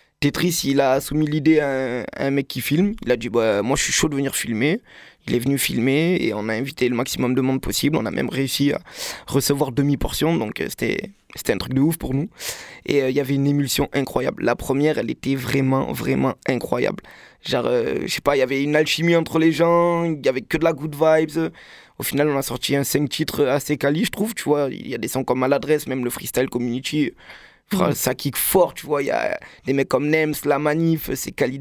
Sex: male